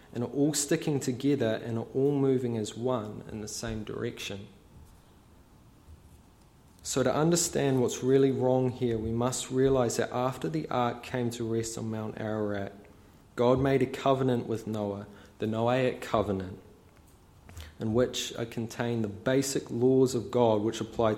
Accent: Australian